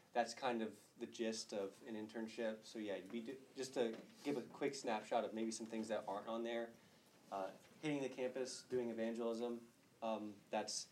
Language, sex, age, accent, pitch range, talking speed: English, male, 30-49, American, 105-120 Hz, 180 wpm